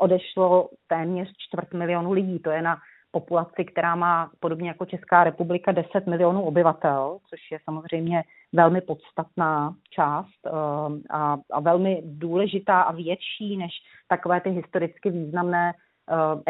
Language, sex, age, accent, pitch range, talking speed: Czech, female, 30-49, native, 155-185 Hz, 135 wpm